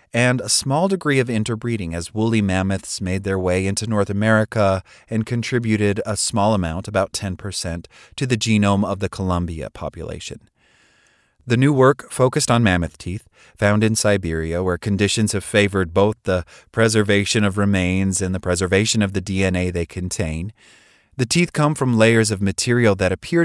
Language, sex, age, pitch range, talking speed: English, male, 30-49, 95-115 Hz, 165 wpm